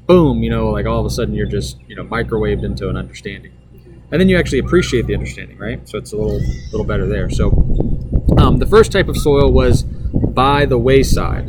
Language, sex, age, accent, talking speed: English, male, 20-39, American, 220 wpm